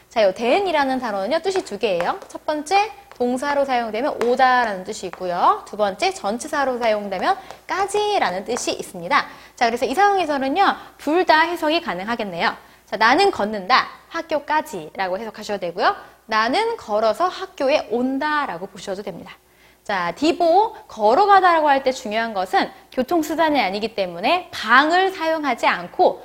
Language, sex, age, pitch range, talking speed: English, female, 20-39, 220-335 Hz, 115 wpm